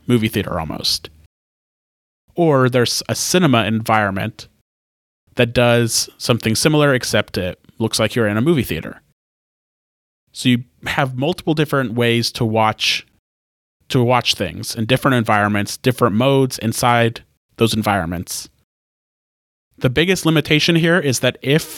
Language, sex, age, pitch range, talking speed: English, male, 30-49, 105-135 Hz, 130 wpm